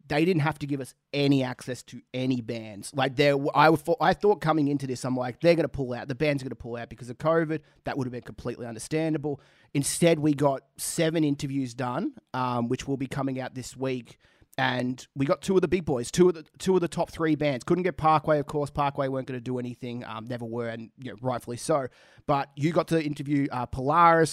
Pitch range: 125-150 Hz